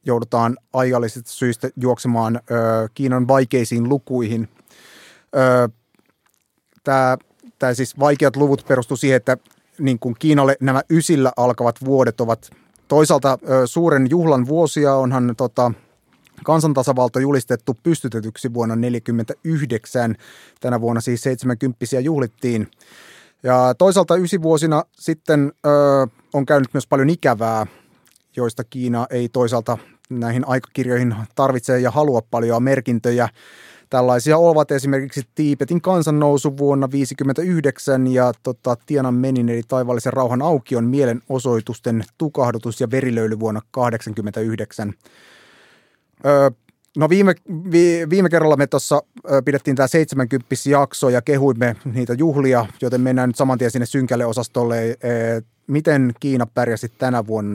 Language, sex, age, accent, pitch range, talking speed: Finnish, male, 30-49, native, 120-140 Hz, 110 wpm